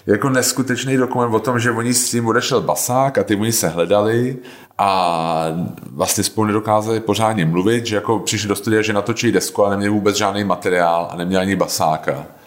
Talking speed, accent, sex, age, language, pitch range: 190 wpm, native, male, 30-49, Czech, 90-115 Hz